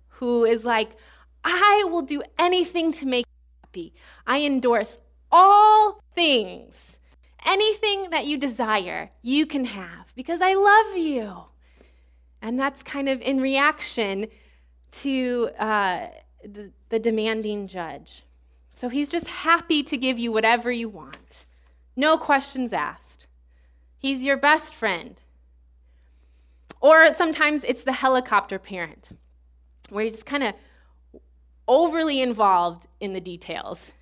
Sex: female